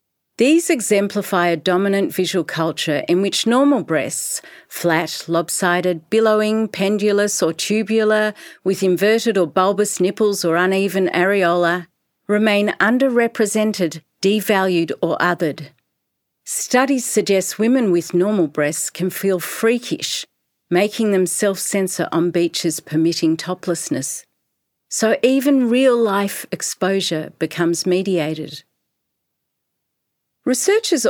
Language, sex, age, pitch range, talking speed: English, female, 40-59, 170-220 Hz, 100 wpm